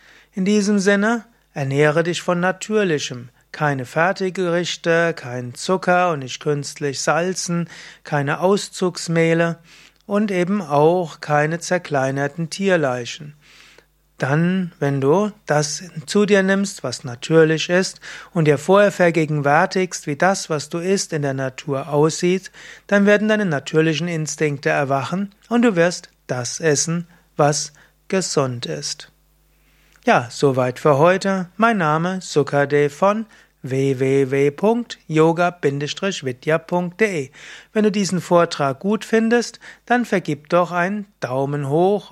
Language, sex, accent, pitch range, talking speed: German, male, German, 145-190 Hz, 115 wpm